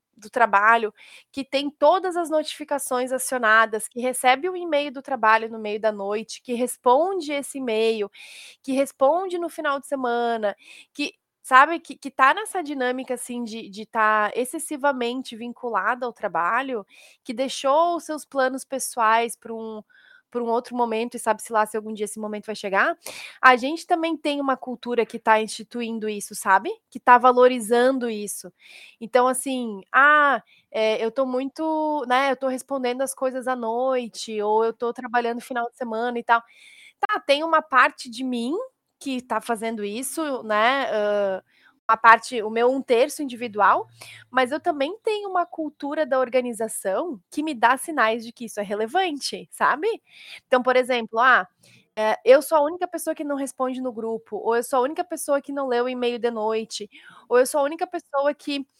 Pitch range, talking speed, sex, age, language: 225-280 Hz, 180 wpm, female, 20-39, Portuguese